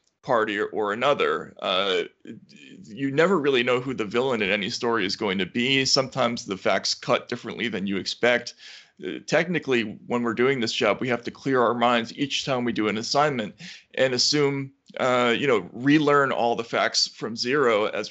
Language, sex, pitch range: English, male, 120-145 Hz